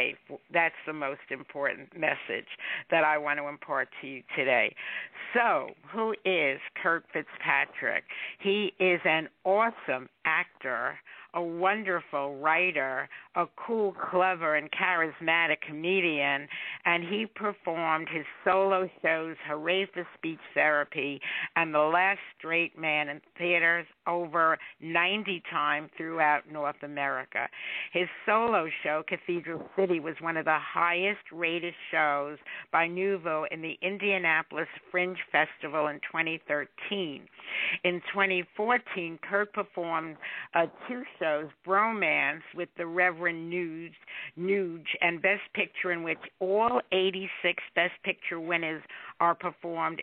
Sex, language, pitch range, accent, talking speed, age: female, English, 155-185 Hz, American, 120 wpm, 60-79